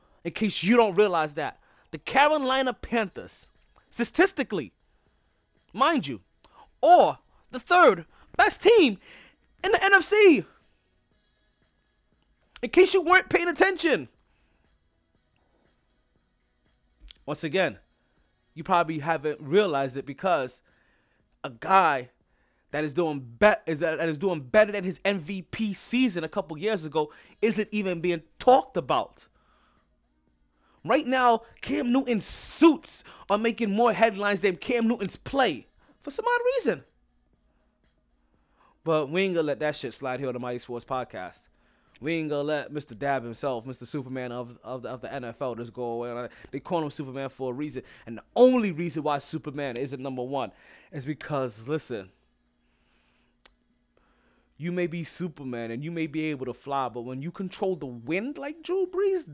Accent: American